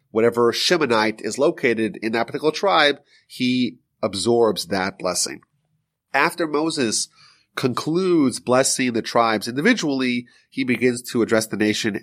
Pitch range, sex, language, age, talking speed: 115-165 Hz, male, English, 30-49, 125 wpm